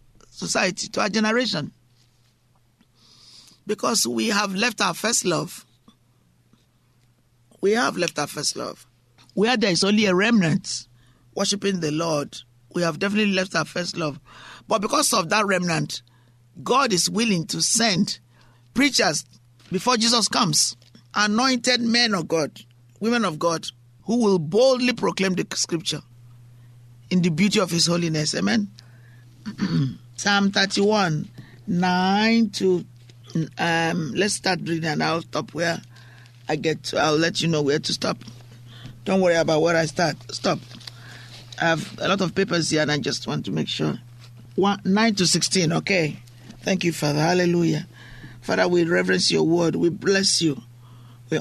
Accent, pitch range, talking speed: Nigerian, 120-195 Hz, 150 wpm